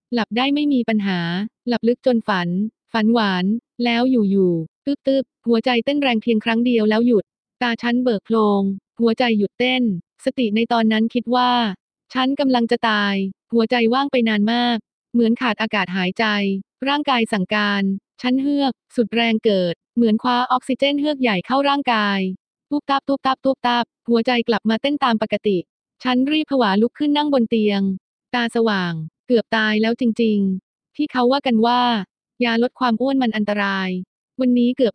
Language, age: Thai, 20-39